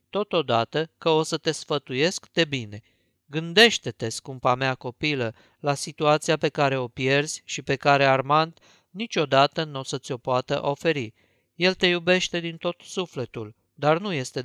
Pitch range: 130-165 Hz